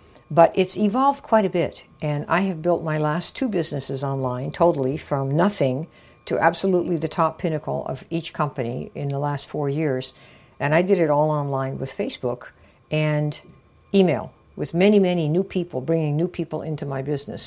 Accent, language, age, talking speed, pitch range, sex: American, English, 60-79, 180 wpm, 140-175 Hz, female